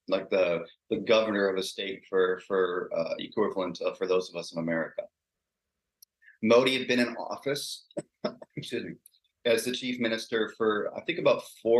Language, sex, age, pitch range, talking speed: English, male, 40-59, 95-115 Hz, 160 wpm